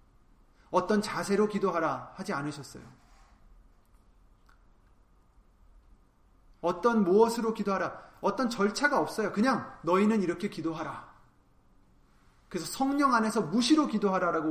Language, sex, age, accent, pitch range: Korean, male, 30-49, native, 130-200 Hz